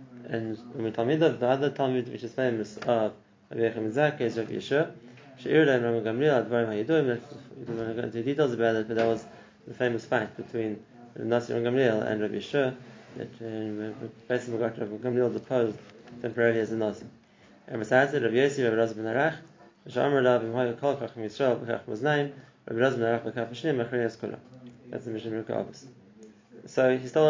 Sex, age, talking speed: male, 20-39, 125 wpm